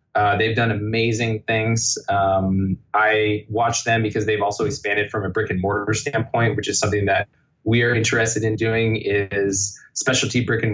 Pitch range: 105-120 Hz